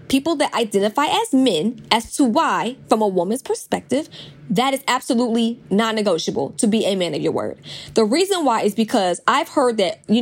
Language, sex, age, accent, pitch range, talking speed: English, female, 10-29, American, 215-270 Hz, 190 wpm